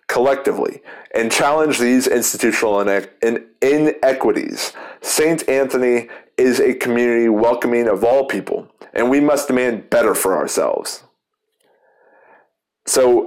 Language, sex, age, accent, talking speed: English, male, 30-49, American, 105 wpm